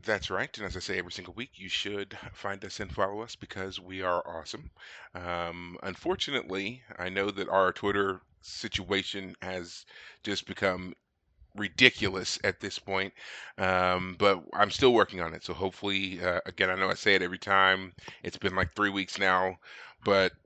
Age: 30-49